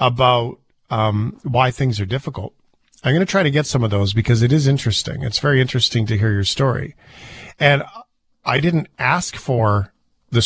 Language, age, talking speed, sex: English, 40-59, 185 wpm, male